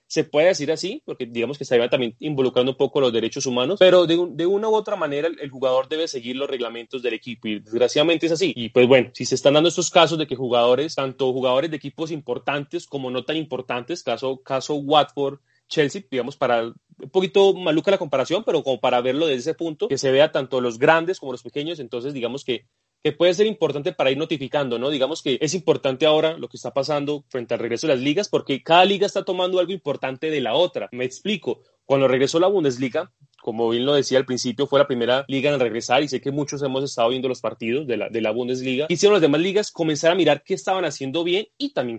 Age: 30-49